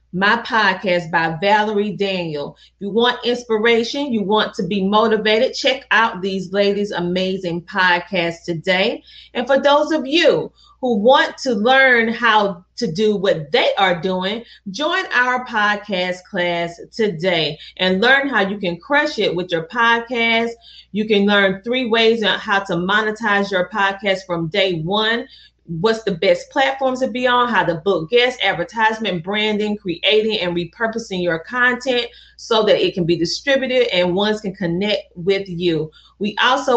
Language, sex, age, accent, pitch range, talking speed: English, female, 30-49, American, 180-235 Hz, 160 wpm